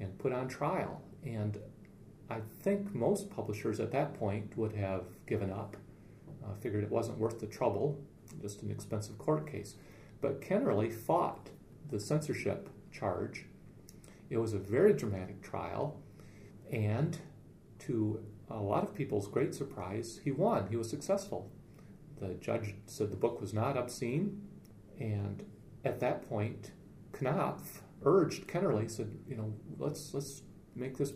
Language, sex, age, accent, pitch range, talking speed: English, male, 40-59, American, 105-140 Hz, 145 wpm